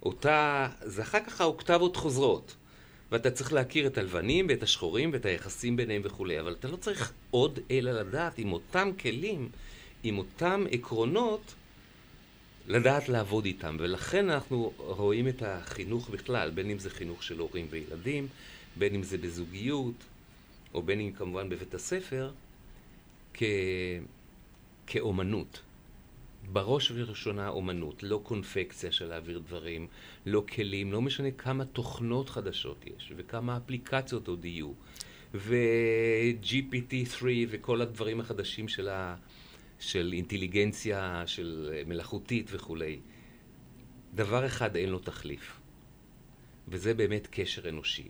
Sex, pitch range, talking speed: male, 95-125 Hz, 120 wpm